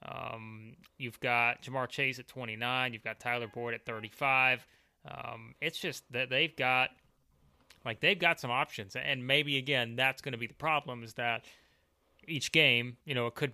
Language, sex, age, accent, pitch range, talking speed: English, male, 30-49, American, 115-140 Hz, 180 wpm